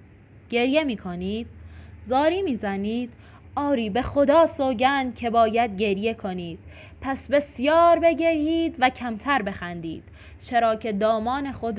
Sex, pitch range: female, 205-255 Hz